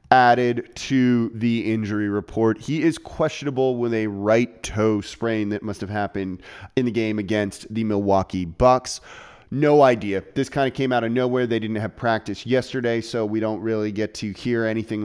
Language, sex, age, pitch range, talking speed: English, male, 30-49, 105-125 Hz, 185 wpm